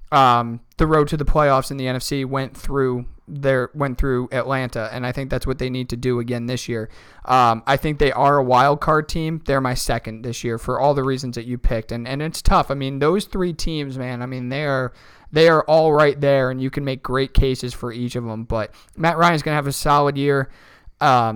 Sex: male